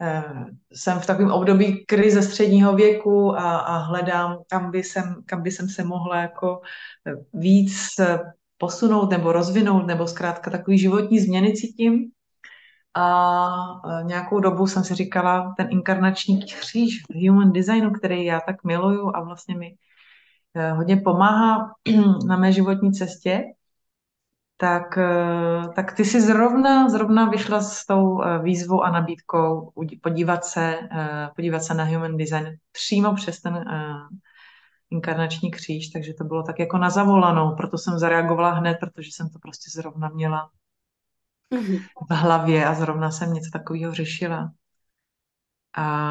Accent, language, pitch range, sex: native, Czech, 165-195 Hz, female